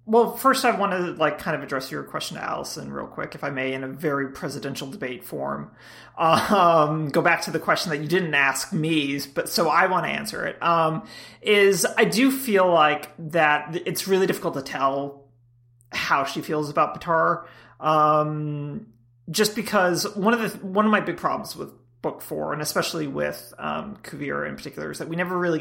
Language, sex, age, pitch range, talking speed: English, male, 30-49, 140-180 Hz, 200 wpm